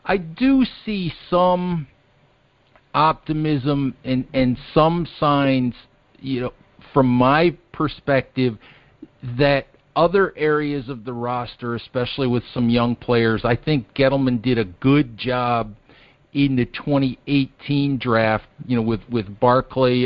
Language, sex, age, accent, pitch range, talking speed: English, male, 50-69, American, 120-145 Hz, 125 wpm